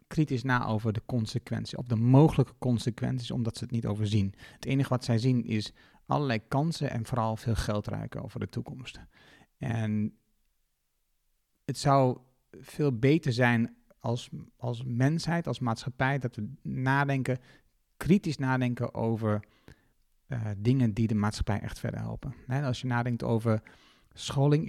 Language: Dutch